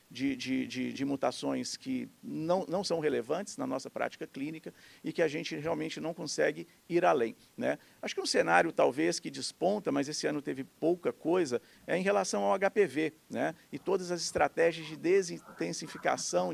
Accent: Brazilian